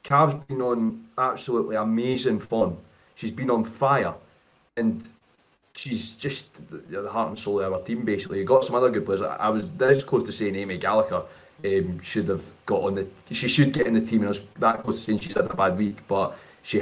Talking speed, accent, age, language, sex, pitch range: 220 wpm, British, 20-39, English, male, 100-135 Hz